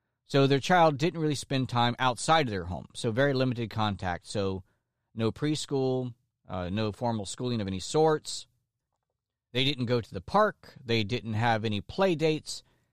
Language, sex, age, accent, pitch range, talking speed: English, male, 40-59, American, 115-150 Hz, 170 wpm